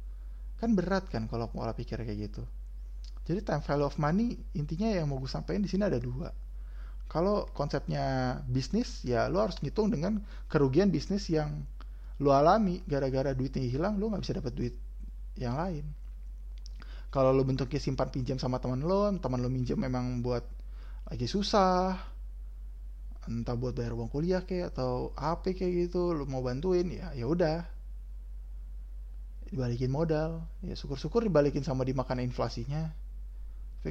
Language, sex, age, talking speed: Indonesian, male, 20-39, 150 wpm